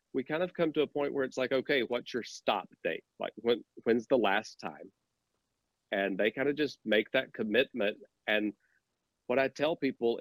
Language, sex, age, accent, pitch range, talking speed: English, male, 40-59, American, 105-135 Hz, 200 wpm